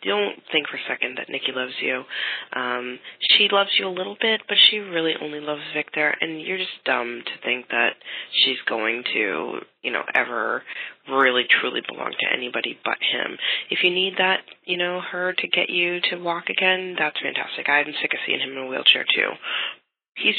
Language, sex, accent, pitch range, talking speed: English, female, American, 135-185 Hz, 195 wpm